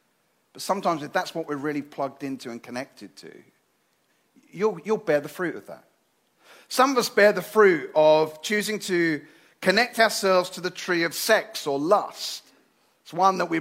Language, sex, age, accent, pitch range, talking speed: English, male, 40-59, British, 170-230 Hz, 180 wpm